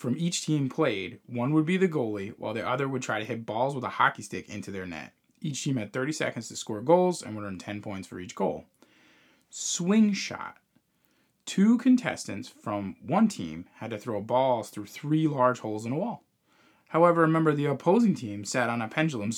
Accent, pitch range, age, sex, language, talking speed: American, 105-150 Hz, 20-39, male, English, 205 wpm